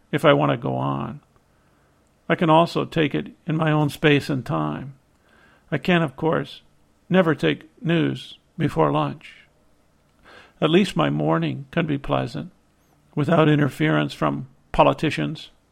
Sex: male